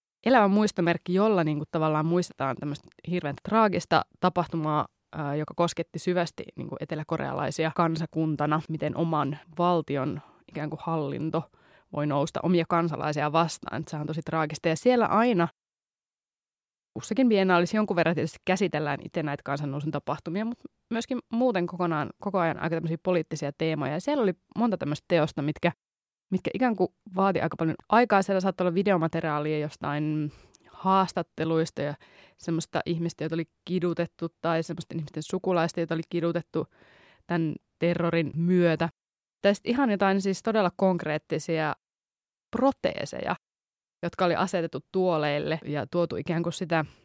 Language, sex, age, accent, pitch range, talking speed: Finnish, female, 20-39, native, 155-185 Hz, 135 wpm